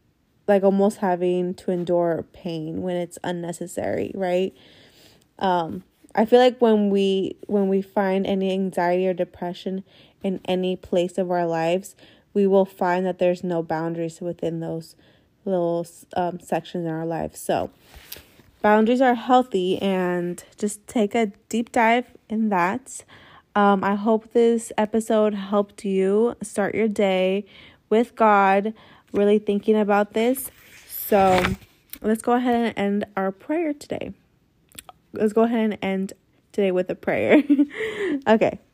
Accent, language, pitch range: American, English, 180-215 Hz